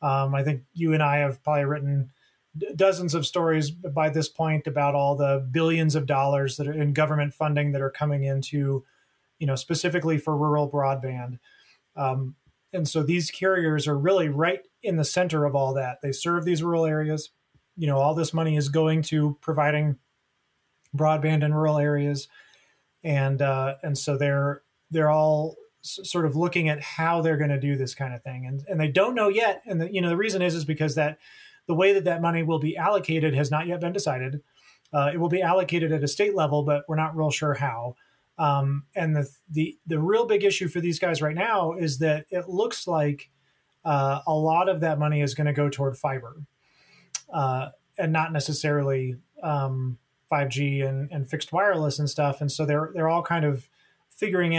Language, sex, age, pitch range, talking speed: English, male, 30-49, 140-165 Hz, 200 wpm